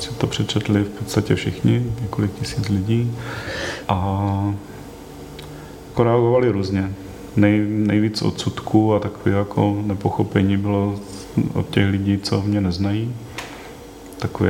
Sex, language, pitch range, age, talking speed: male, Czech, 100-110 Hz, 30-49, 115 wpm